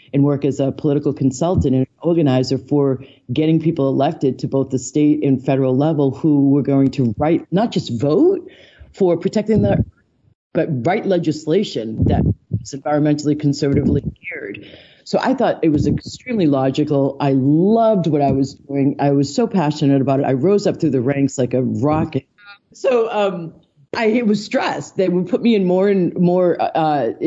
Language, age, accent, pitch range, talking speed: English, 40-59, American, 140-185 Hz, 185 wpm